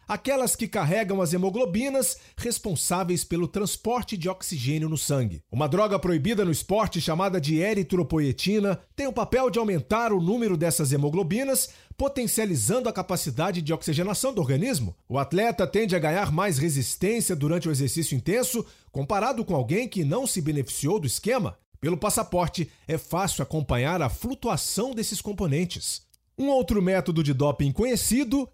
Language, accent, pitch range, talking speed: Portuguese, Brazilian, 150-210 Hz, 150 wpm